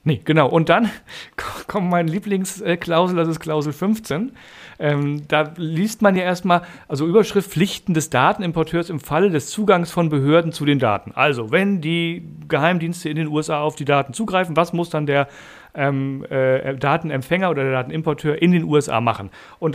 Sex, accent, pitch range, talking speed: male, German, 140-175 Hz, 175 wpm